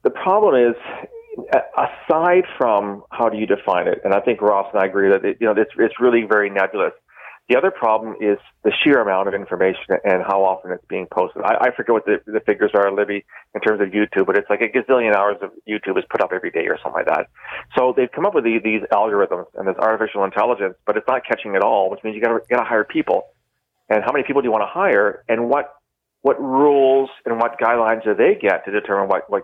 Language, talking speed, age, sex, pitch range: English, 245 wpm, 40-59, male, 100-120 Hz